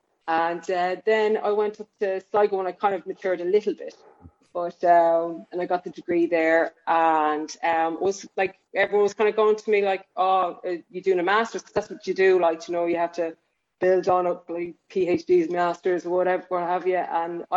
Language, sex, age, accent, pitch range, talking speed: English, female, 20-39, Irish, 165-200 Hz, 220 wpm